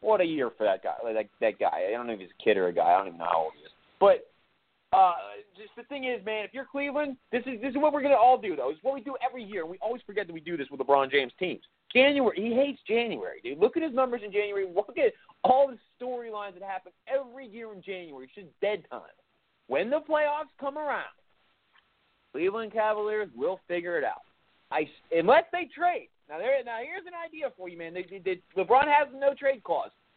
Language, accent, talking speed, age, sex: English, American, 245 wpm, 30-49, male